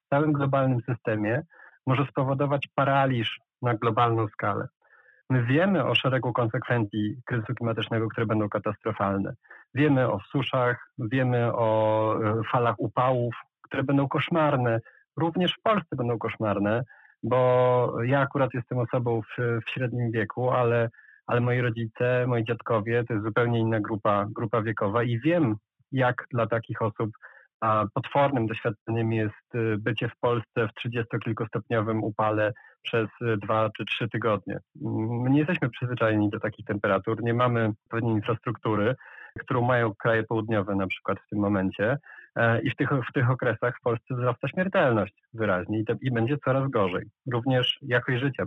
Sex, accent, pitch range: male, native, 110-130 Hz